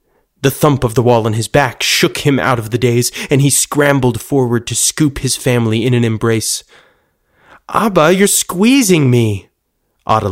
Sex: male